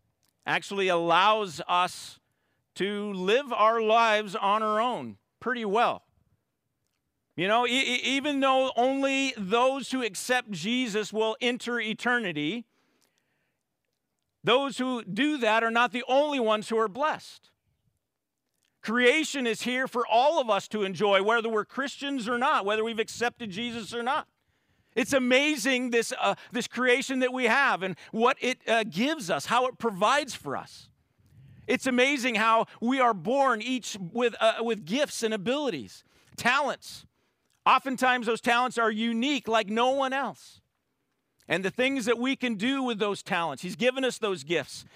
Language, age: English, 50-69